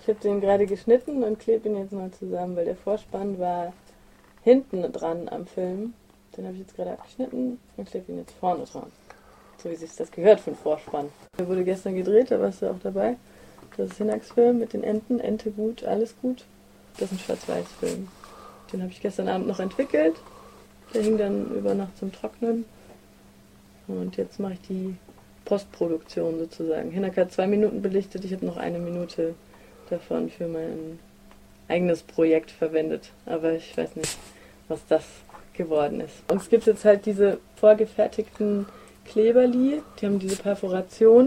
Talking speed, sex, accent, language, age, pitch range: 175 wpm, female, German, German, 30-49, 180-220 Hz